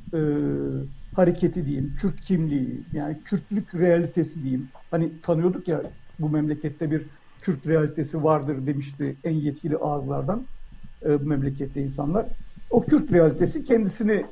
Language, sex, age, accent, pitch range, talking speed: Turkish, male, 60-79, native, 155-195 Hz, 125 wpm